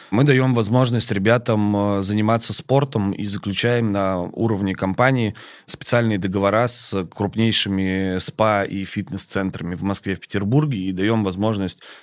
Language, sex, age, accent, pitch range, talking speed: Russian, male, 30-49, native, 95-110 Hz, 125 wpm